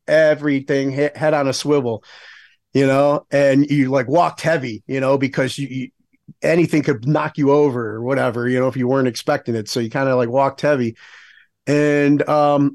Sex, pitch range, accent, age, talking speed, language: male, 130-150 Hz, American, 40-59, 195 wpm, English